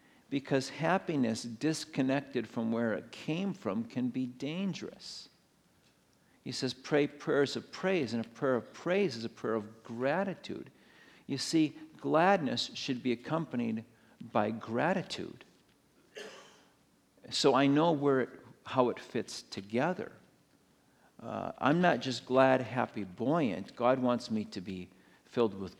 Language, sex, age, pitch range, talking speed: English, male, 50-69, 115-140 Hz, 135 wpm